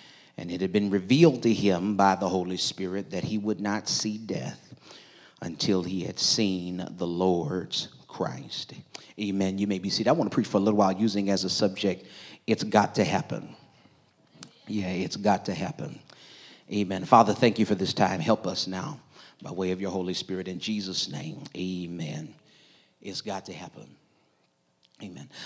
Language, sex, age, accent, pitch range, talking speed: English, male, 40-59, American, 100-125 Hz, 175 wpm